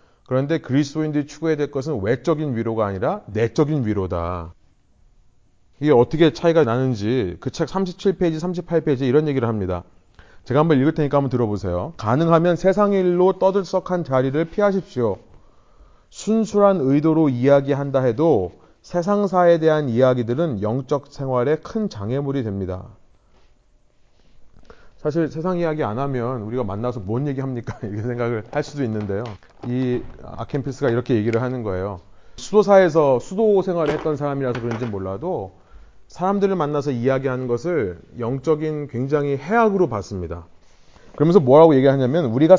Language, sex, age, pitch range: Korean, male, 30-49, 115-160 Hz